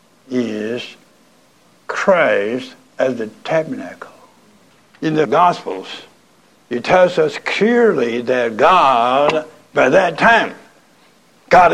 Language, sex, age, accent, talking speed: English, male, 60-79, American, 90 wpm